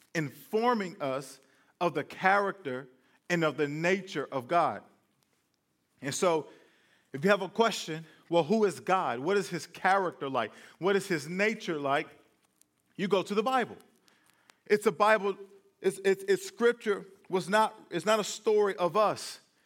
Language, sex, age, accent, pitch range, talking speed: English, male, 40-59, American, 170-210 Hz, 160 wpm